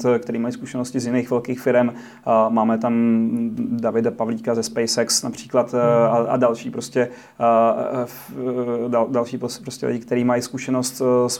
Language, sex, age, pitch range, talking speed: Czech, male, 30-49, 120-130 Hz, 125 wpm